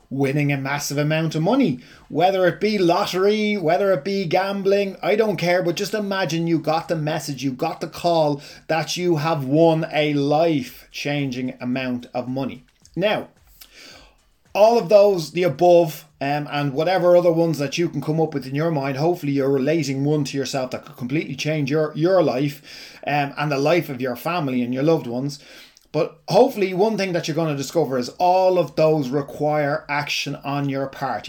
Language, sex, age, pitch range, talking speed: English, male, 30-49, 145-185 Hz, 195 wpm